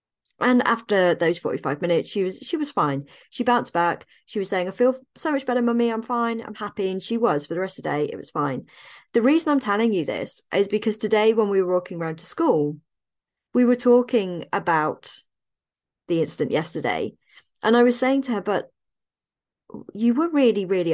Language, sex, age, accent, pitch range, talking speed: English, female, 40-59, British, 175-245 Hz, 205 wpm